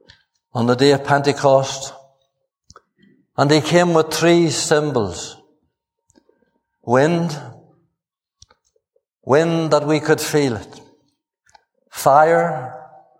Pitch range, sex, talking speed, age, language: 135-165 Hz, male, 85 wpm, 60-79, English